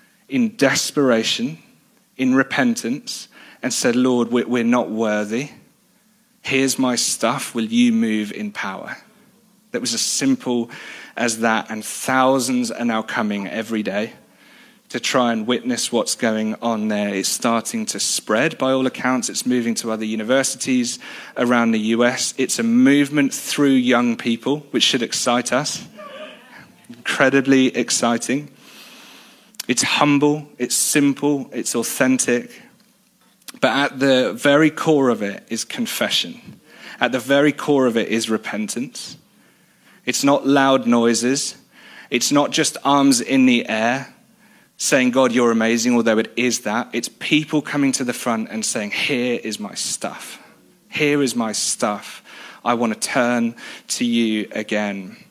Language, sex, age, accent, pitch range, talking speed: English, male, 30-49, British, 115-160 Hz, 145 wpm